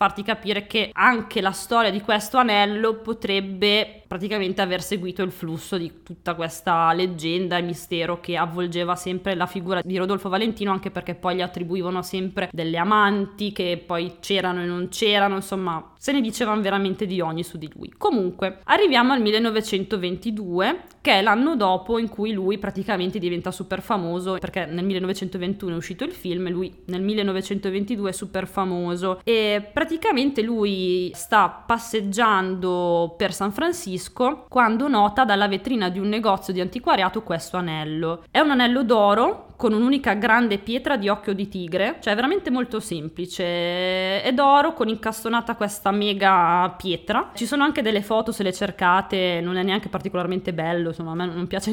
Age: 20-39